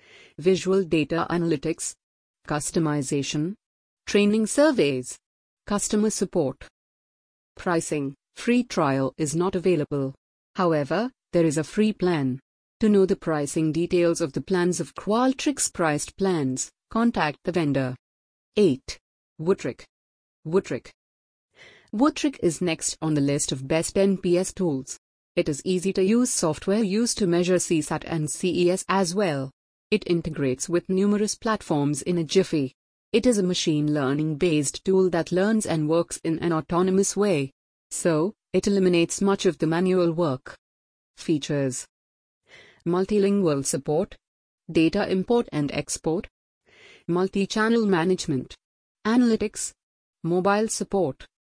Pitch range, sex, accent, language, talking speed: 150-195 Hz, female, Indian, English, 120 wpm